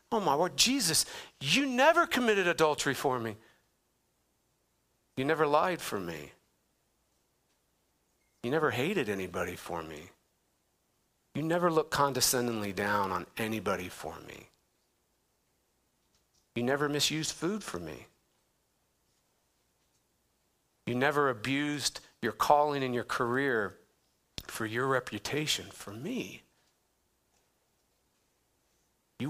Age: 50-69